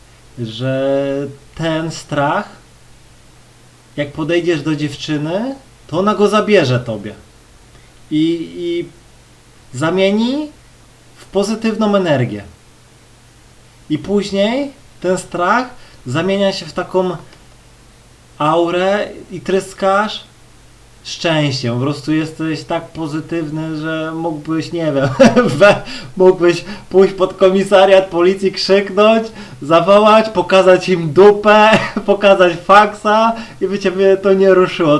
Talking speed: 100 wpm